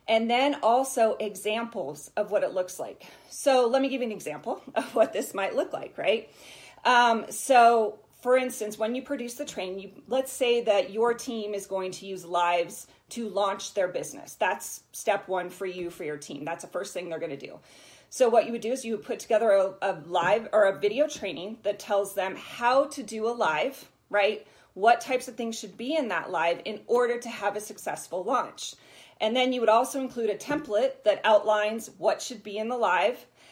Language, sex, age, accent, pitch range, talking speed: English, female, 30-49, American, 200-245 Hz, 215 wpm